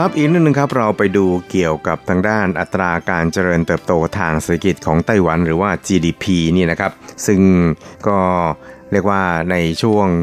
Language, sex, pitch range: Thai, male, 85-105 Hz